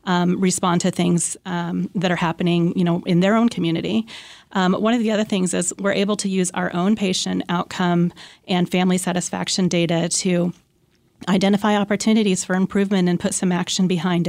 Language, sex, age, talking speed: English, female, 30-49, 180 wpm